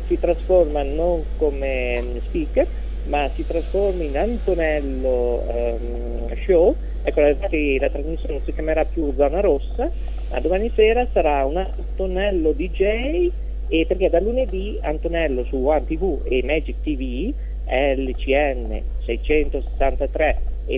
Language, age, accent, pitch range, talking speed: Italian, 40-59, native, 135-200 Hz, 115 wpm